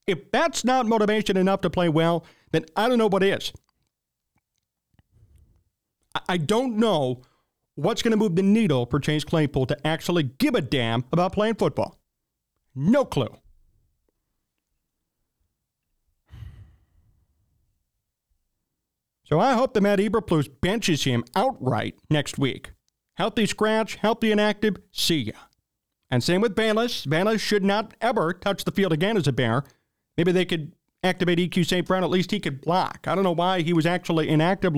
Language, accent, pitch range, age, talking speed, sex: English, American, 145-210 Hz, 40-59, 150 wpm, male